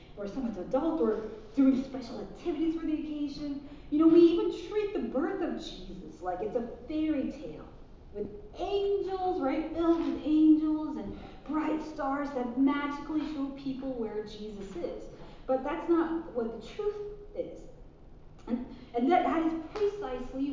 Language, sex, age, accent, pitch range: Korean, female, 40-59, American, 225-325 Hz